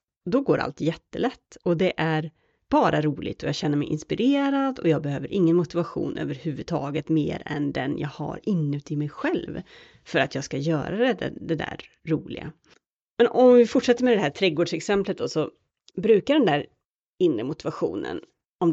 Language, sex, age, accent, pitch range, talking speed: Swedish, female, 30-49, native, 155-240 Hz, 165 wpm